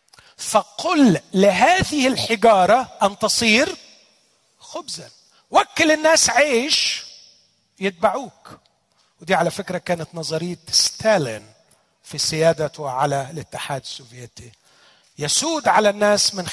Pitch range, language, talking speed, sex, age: 140-190 Hz, Arabic, 90 wpm, male, 40-59